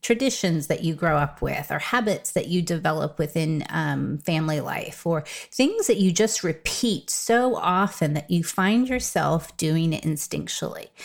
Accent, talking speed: American, 165 wpm